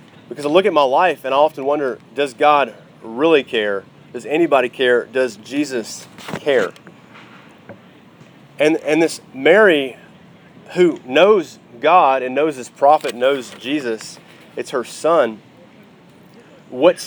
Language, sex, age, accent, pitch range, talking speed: English, male, 30-49, American, 125-150 Hz, 130 wpm